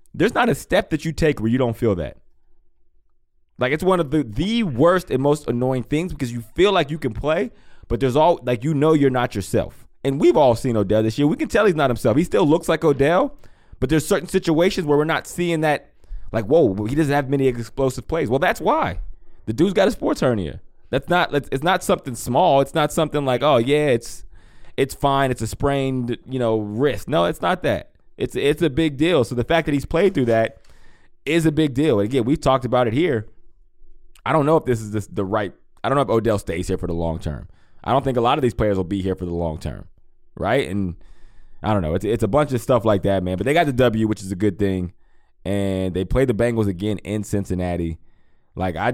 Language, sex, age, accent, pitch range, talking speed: English, male, 20-39, American, 95-145 Hz, 245 wpm